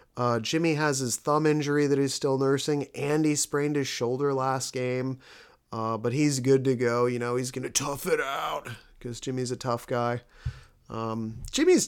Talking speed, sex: 190 wpm, male